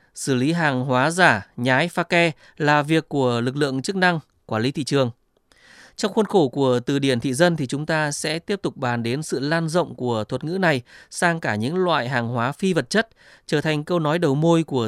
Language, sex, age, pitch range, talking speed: Vietnamese, male, 20-39, 130-175 Hz, 235 wpm